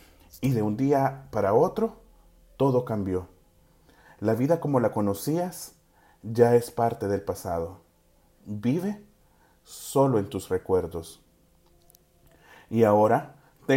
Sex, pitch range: male, 110-155 Hz